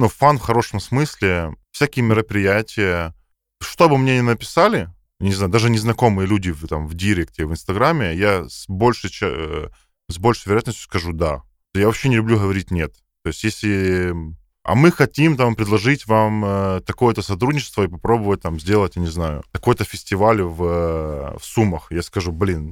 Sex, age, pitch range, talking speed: male, 10-29, 85-115 Hz, 165 wpm